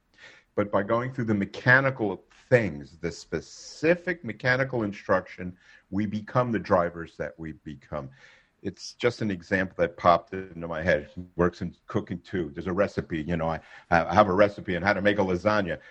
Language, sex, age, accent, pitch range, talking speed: English, male, 50-69, American, 95-125 Hz, 175 wpm